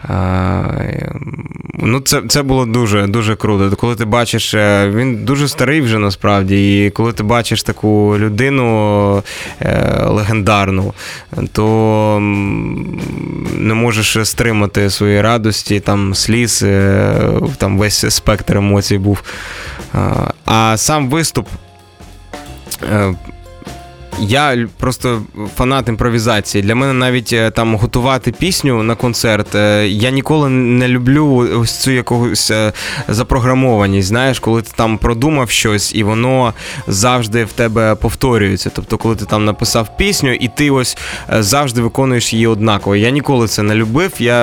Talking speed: 120 wpm